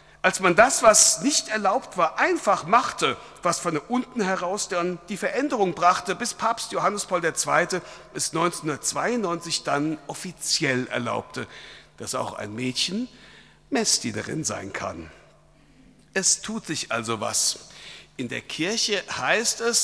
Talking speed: 135 wpm